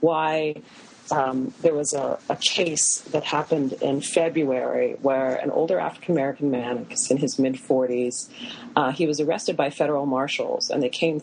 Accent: American